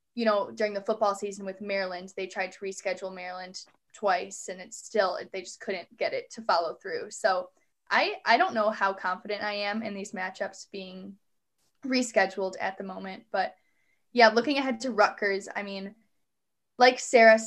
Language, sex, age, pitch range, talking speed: English, female, 10-29, 195-225 Hz, 180 wpm